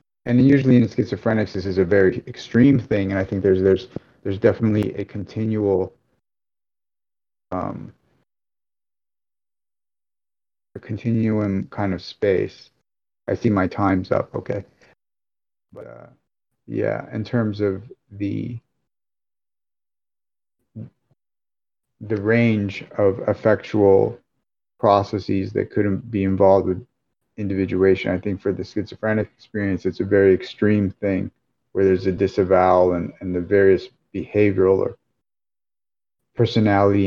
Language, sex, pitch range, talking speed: English, male, 95-110 Hz, 115 wpm